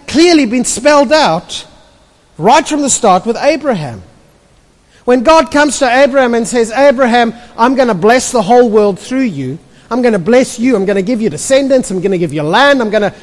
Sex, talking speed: male, 215 wpm